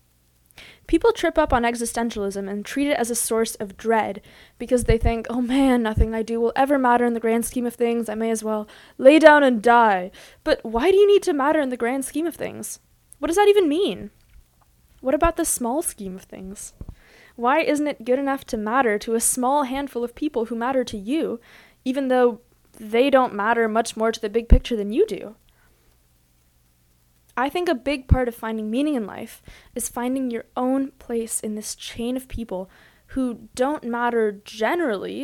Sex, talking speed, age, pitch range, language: female, 200 wpm, 20-39, 225-280 Hz, English